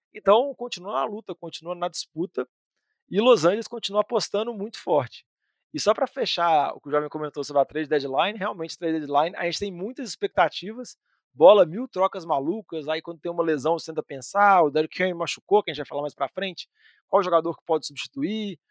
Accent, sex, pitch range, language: Brazilian, male, 160-215 Hz, Portuguese